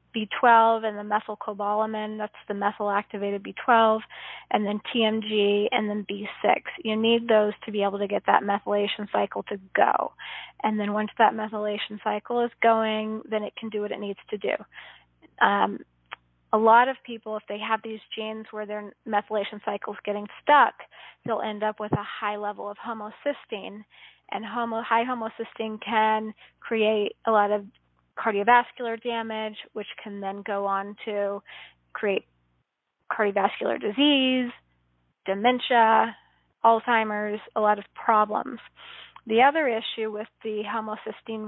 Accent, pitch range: American, 210-225 Hz